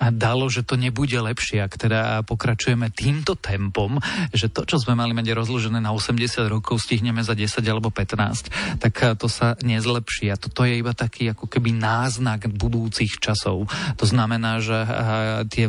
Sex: male